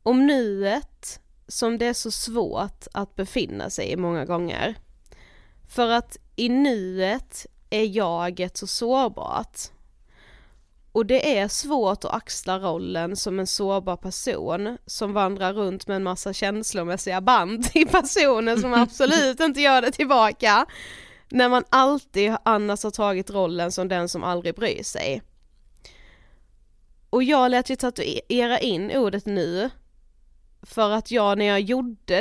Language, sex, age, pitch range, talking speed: Swedish, female, 20-39, 190-240 Hz, 140 wpm